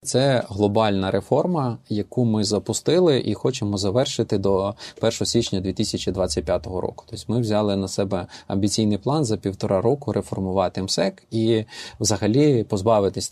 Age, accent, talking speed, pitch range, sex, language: 20-39, native, 130 wpm, 105-125 Hz, male, Ukrainian